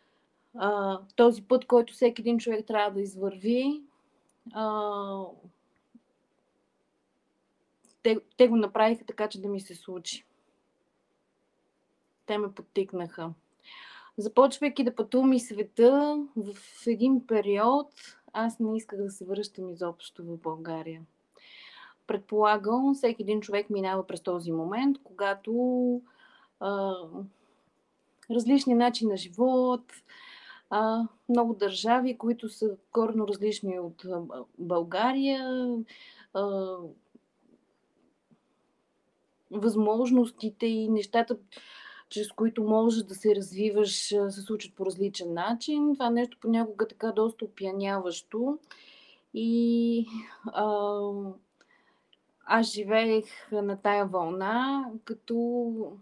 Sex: female